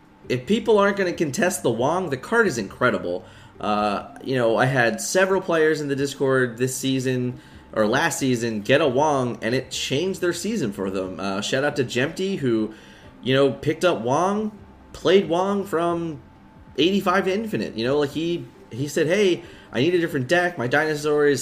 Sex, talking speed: male, 195 wpm